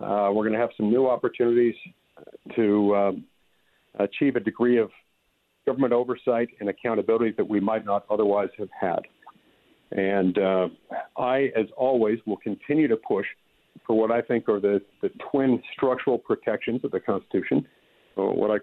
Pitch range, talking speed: 110-145 Hz, 160 wpm